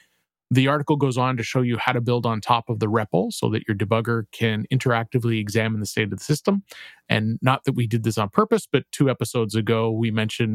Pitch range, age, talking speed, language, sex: 105-130 Hz, 30-49, 235 wpm, English, male